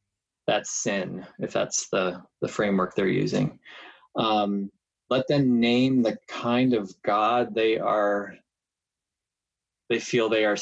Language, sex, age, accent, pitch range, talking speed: English, male, 20-39, American, 110-135 Hz, 130 wpm